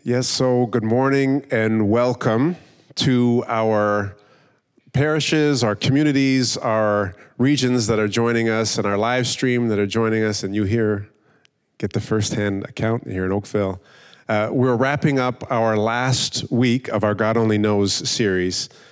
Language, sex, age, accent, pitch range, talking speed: English, male, 30-49, American, 110-135 Hz, 155 wpm